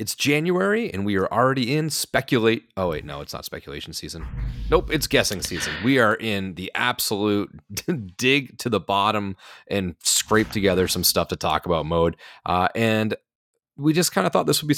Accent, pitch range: American, 90-115 Hz